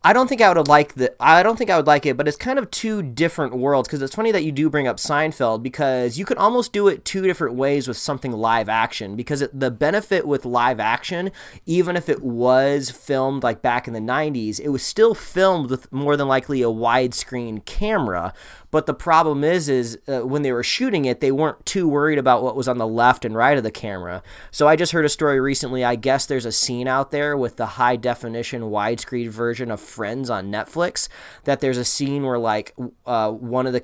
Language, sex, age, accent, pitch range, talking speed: English, male, 20-39, American, 115-145 Hz, 230 wpm